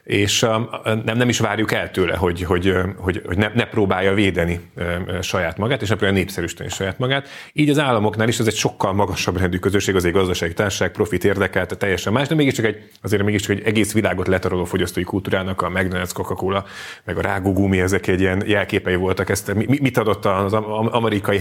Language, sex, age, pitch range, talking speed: Hungarian, male, 30-49, 95-115 Hz, 180 wpm